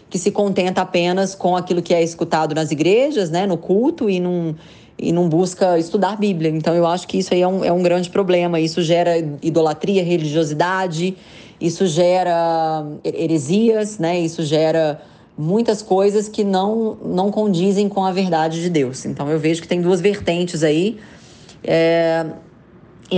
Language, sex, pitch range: Portuguese, female, 160-190 Hz